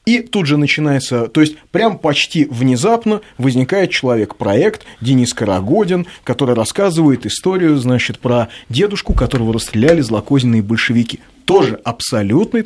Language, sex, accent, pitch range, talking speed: Russian, male, native, 110-155 Hz, 125 wpm